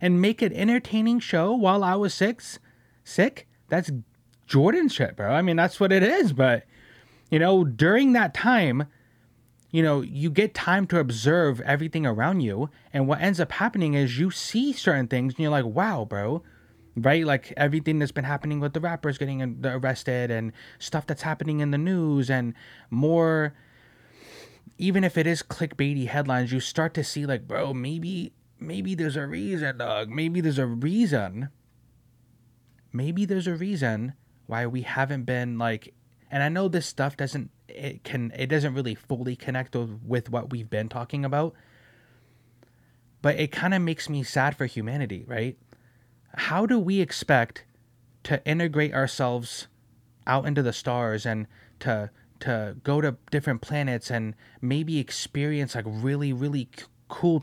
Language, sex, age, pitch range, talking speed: English, male, 20-39, 120-165 Hz, 165 wpm